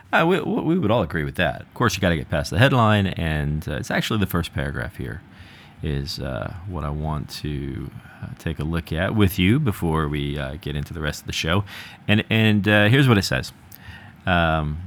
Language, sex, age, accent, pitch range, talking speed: English, male, 40-59, American, 85-120 Hz, 225 wpm